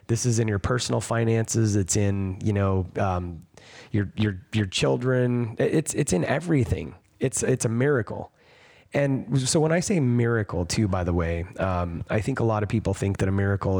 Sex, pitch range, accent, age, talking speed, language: male, 95-120 Hz, American, 30-49, 190 wpm, English